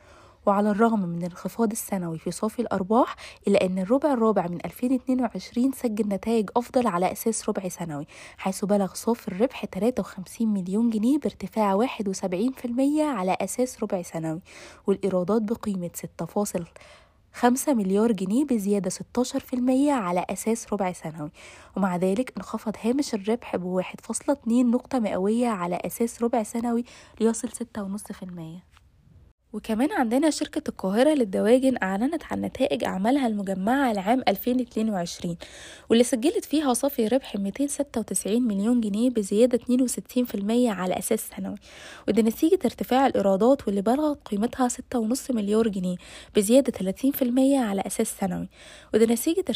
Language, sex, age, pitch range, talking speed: Arabic, female, 20-39, 195-250 Hz, 125 wpm